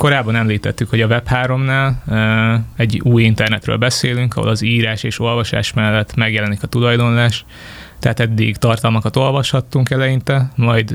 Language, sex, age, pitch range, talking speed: Hungarian, male, 20-39, 110-125 Hz, 135 wpm